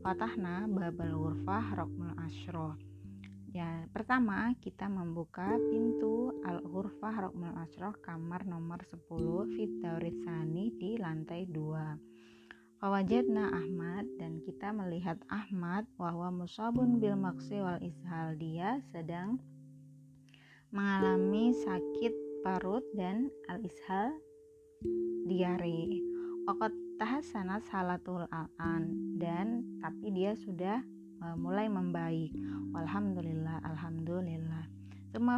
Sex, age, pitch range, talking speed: female, 20-39, 155-210 Hz, 90 wpm